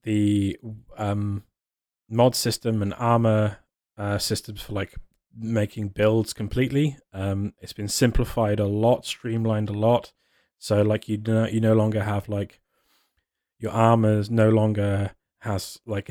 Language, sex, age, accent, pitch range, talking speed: English, male, 20-39, British, 105-120 Hz, 140 wpm